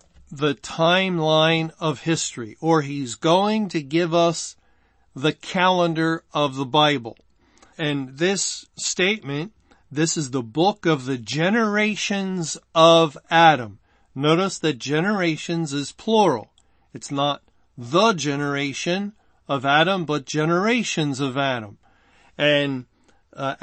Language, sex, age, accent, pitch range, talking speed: English, male, 40-59, American, 140-175 Hz, 110 wpm